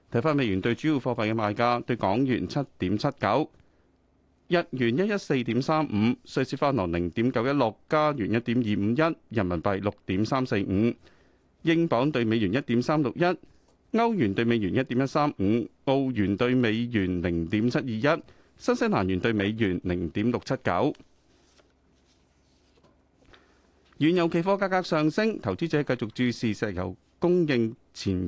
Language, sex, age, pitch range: Chinese, male, 30-49, 100-145 Hz